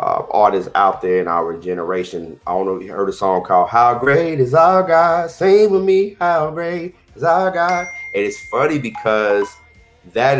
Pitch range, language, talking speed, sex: 95-130 Hz, English, 195 wpm, male